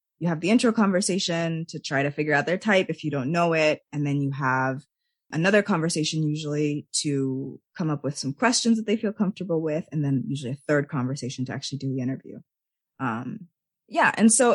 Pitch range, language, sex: 145-190 Hz, English, female